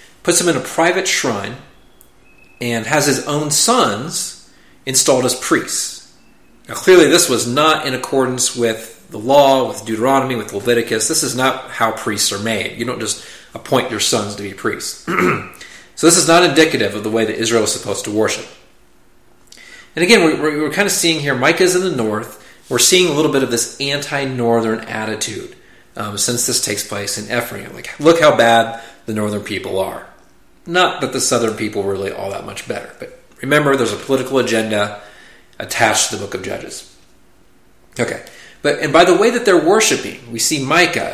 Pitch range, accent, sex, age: 110-150 Hz, American, male, 40-59